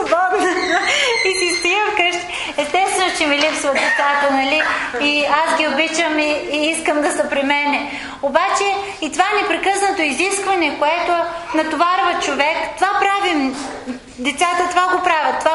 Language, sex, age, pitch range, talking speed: English, female, 30-49, 245-320 Hz, 140 wpm